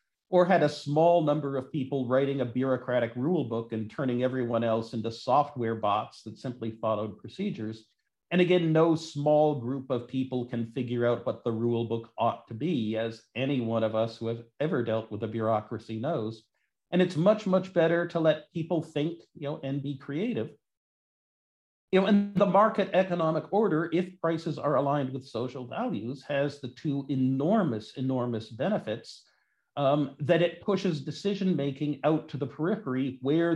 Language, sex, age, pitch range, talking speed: English, male, 50-69, 120-160 Hz, 175 wpm